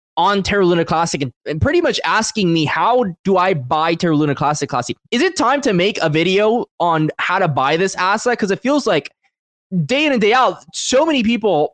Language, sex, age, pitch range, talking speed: English, male, 20-39, 130-190 Hz, 220 wpm